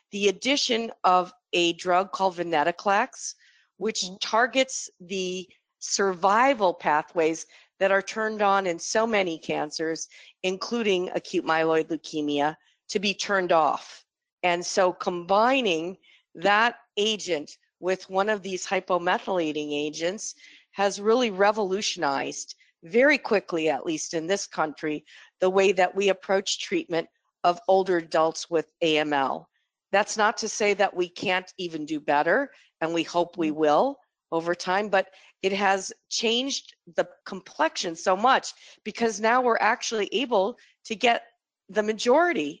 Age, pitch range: 50-69, 175-220 Hz